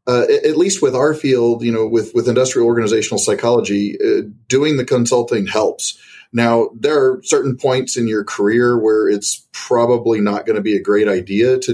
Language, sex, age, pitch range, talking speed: English, male, 40-59, 105-145 Hz, 190 wpm